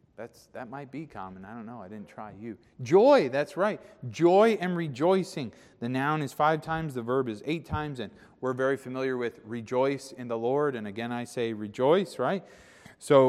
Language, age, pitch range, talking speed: English, 30-49, 115-150 Hz, 200 wpm